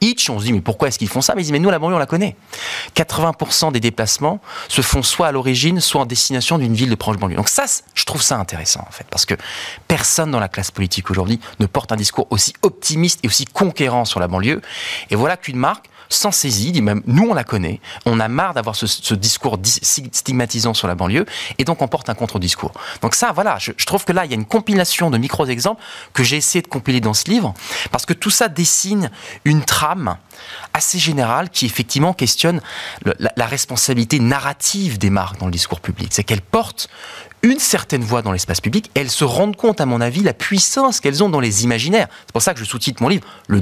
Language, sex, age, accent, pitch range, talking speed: French, male, 30-49, French, 110-165 Hz, 230 wpm